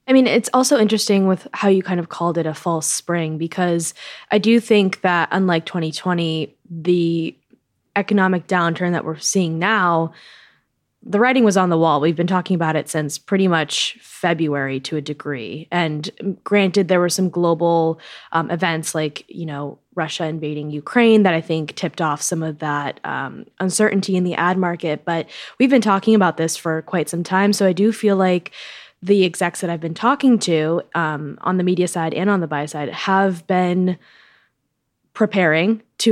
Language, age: English, 20-39